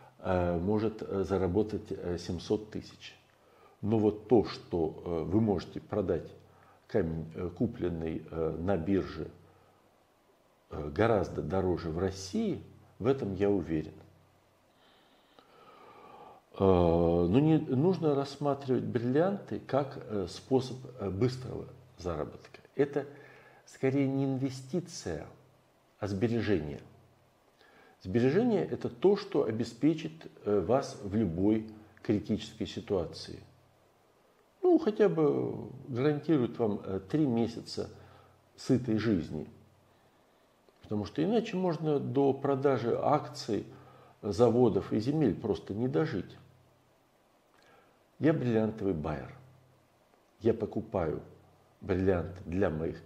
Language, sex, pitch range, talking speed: Russian, male, 95-135 Hz, 90 wpm